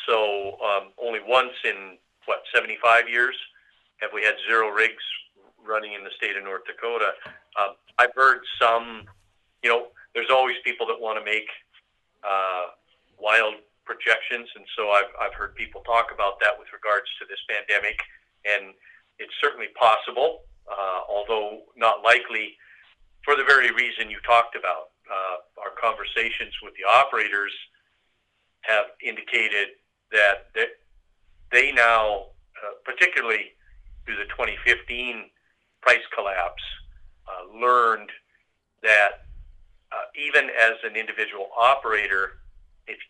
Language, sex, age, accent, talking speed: English, male, 50-69, American, 130 wpm